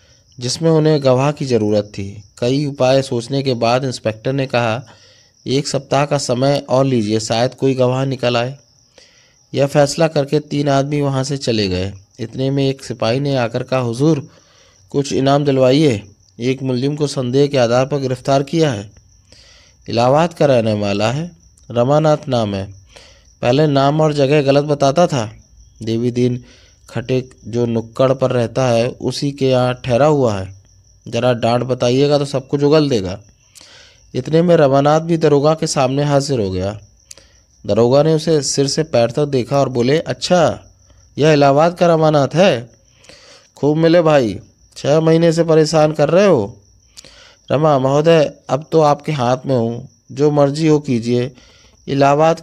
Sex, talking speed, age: male, 160 wpm, 20-39